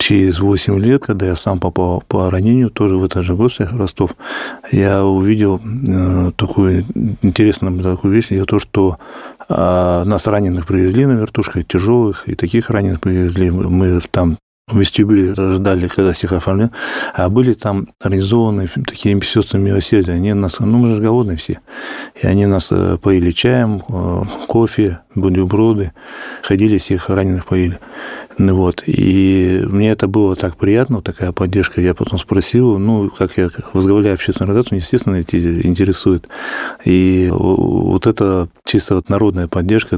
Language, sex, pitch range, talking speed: Russian, male, 90-105 Hz, 145 wpm